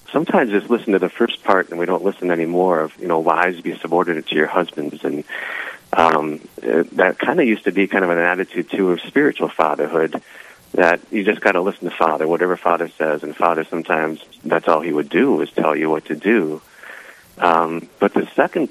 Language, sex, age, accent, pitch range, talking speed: English, male, 40-59, American, 80-95 Hz, 215 wpm